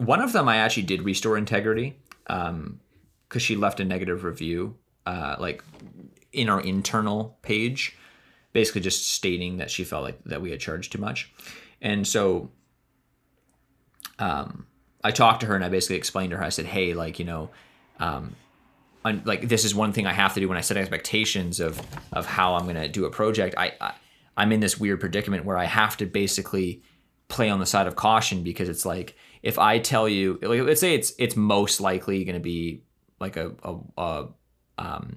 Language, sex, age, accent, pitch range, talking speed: English, male, 30-49, American, 90-110 Hz, 200 wpm